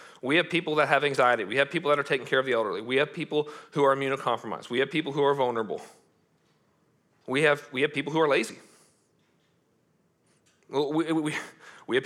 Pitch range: 170-225 Hz